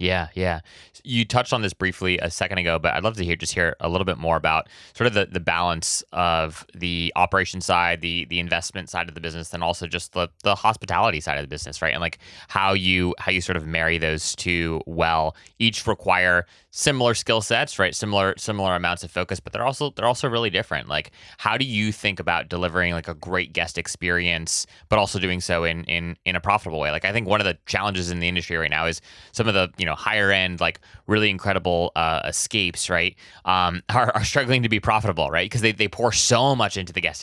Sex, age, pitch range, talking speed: male, 20-39, 85-100 Hz, 235 wpm